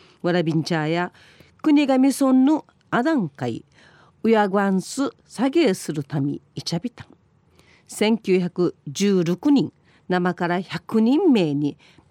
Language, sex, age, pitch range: Japanese, female, 40-59, 160-235 Hz